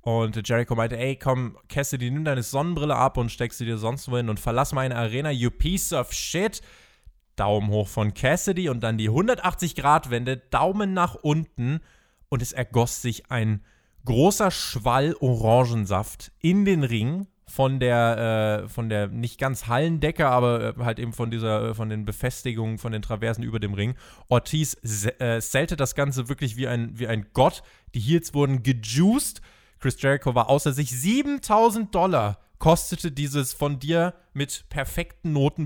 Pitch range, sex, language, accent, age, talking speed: 115-150 Hz, male, German, German, 20-39, 160 wpm